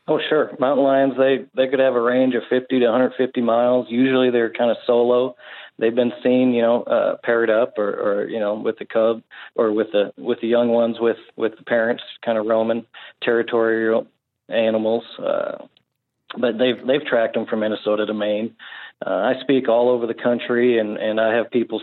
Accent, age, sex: American, 40-59, male